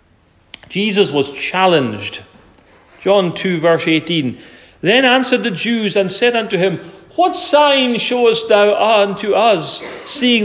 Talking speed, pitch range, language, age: 125 wpm, 135-225 Hz, English, 40-59